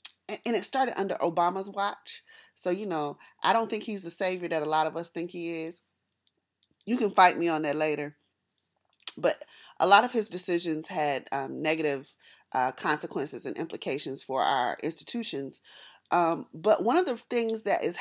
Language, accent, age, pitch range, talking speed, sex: English, American, 30-49, 170-225 Hz, 180 wpm, female